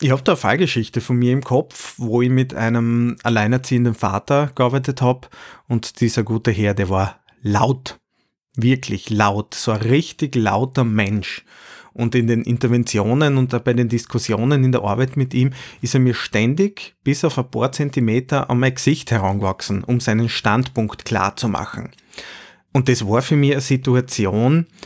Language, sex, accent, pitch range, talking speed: German, male, Austrian, 110-130 Hz, 170 wpm